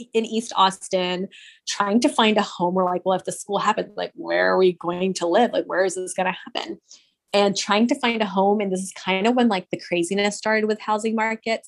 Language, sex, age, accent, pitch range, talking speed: English, female, 20-39, American, 185-225 Hz, 245 wpm